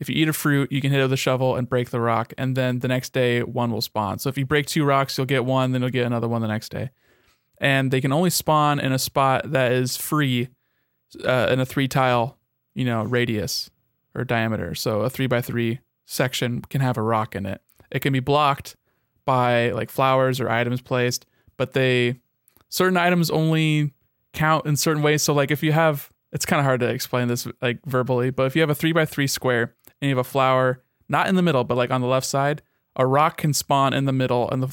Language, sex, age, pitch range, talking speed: English, male, 20-39, 125-140 Hz, 235 wpm